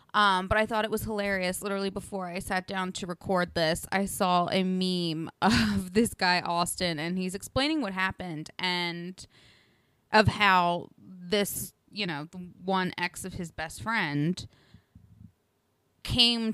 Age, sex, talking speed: 20-39, female, 150 wpm